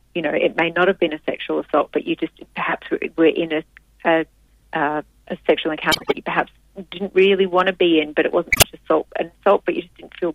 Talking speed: 245 wpm